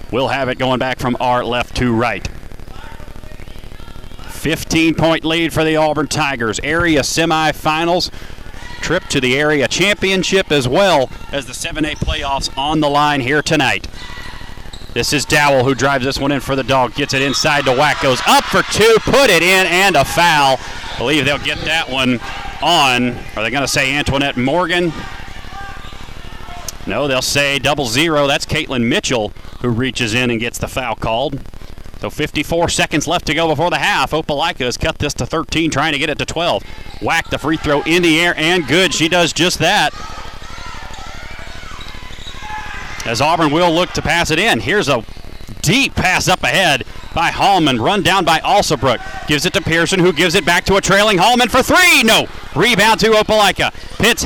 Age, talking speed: 40-59, 180 wpm